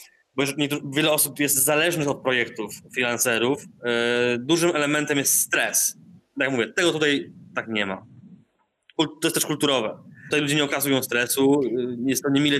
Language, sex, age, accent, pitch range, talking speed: Polish, male, 20-39, native, 125-155 Hz, 165 wpm